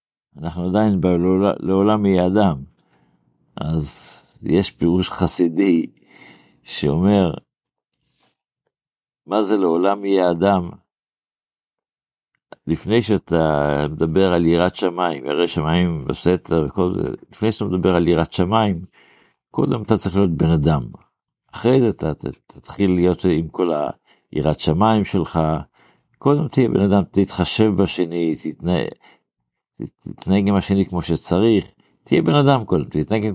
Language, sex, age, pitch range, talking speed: Hebrew, male, 60-79, 85-105 Hz, 120 wpm